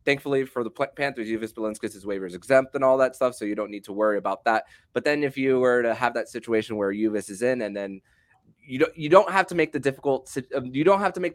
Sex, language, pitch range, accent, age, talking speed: male, English, 105-135 Hz, American, 20-39, 260 wpm